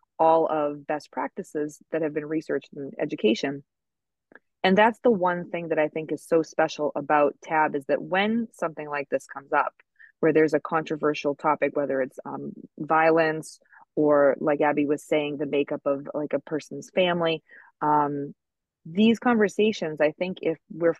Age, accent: 20-39, American